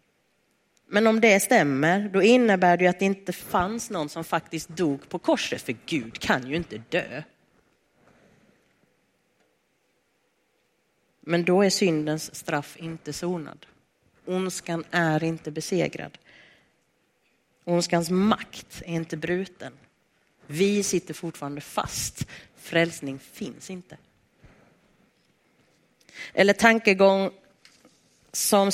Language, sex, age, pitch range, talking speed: Swedish, female, 40-59, 165-220 Hz, 100 wpm